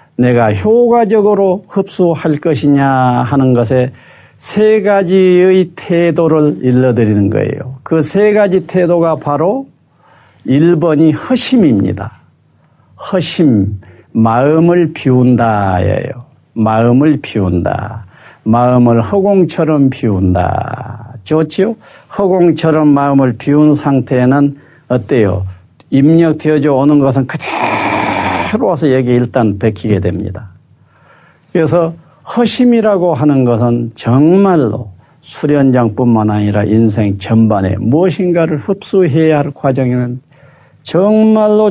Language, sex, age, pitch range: Korean, male, 50-69, 120-175 Hz